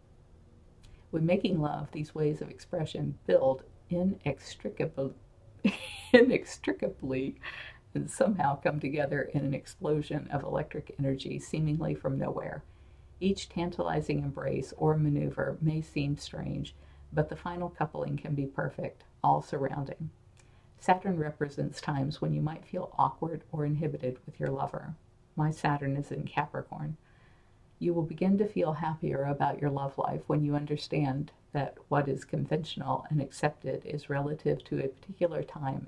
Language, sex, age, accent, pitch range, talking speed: English, female, 50-69, American, 135-155 Hz, 140 wpm